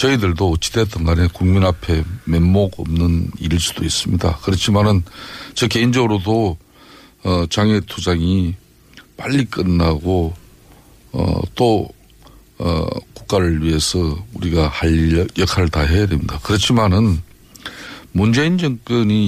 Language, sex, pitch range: Korean, male, 90-130 Hz